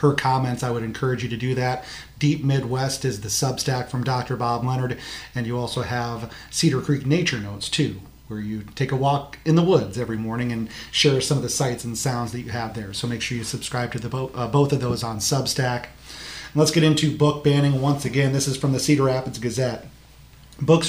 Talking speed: 220 wpm